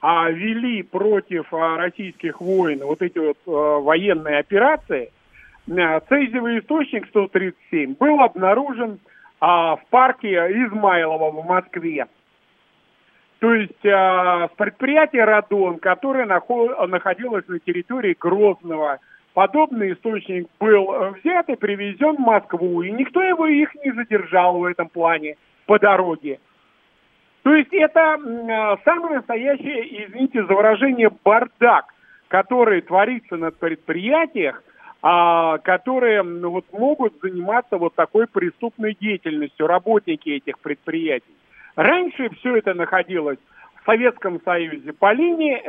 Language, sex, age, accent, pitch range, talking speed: Russian, male, 40-59, native, 175-255 Hz, 105 wpm